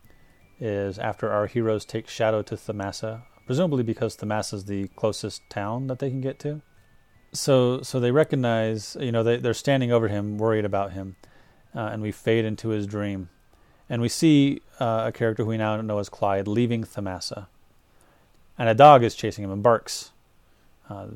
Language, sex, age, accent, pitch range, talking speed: English, male, 30-49, American, 105-120 Hz, 180 wpm